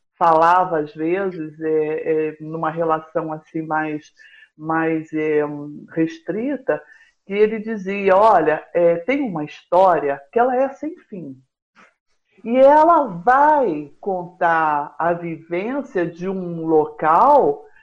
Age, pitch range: 60-79, 170-260 Hz